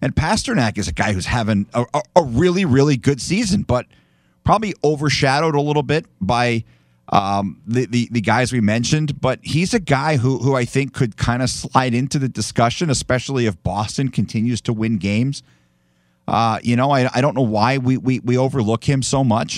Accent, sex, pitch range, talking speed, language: American, male, 110-135 Hz, 195 wpm, English